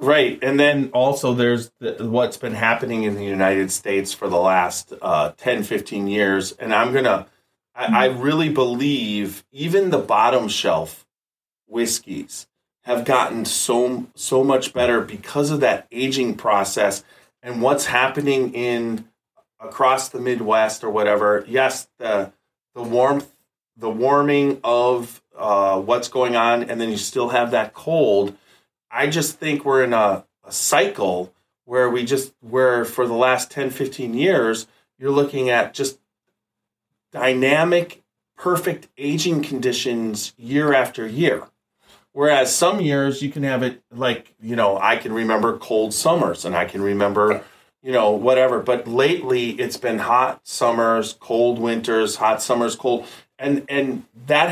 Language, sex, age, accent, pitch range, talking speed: English, male, 30-49, American, 115-140 Hz, 150 wpm